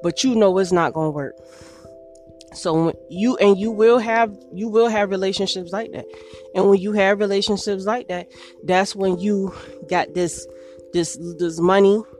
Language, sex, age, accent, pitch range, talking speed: English, female, 20-39, American, 170-215 Hz, 165 wpm